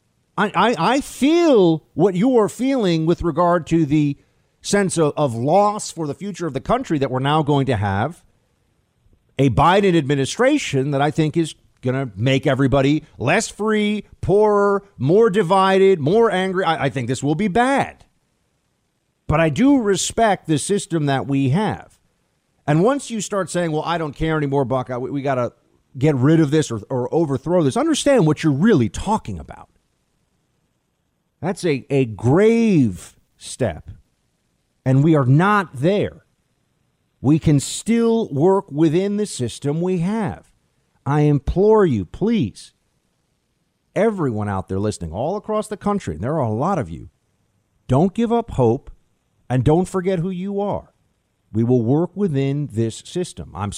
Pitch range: 135-195 Hz